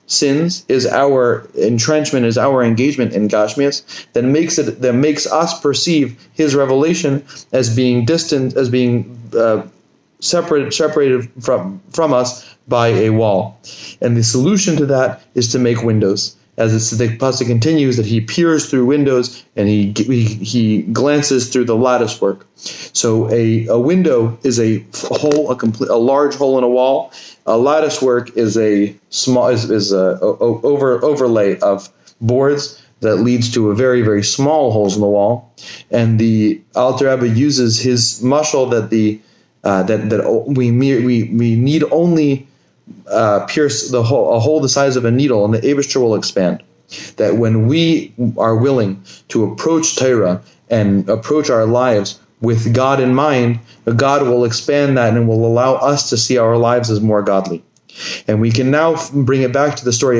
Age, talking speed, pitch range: 30-49, 175 wpm, 115-140 Hz